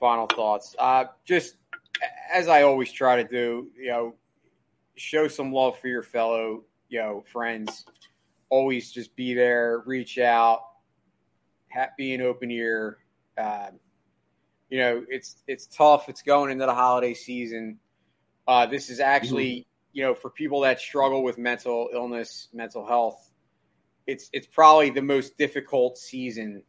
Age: 30-49